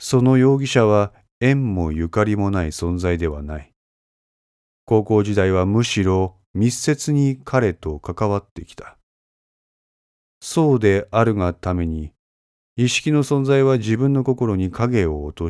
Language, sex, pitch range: Japanese, male, 85-125 Hz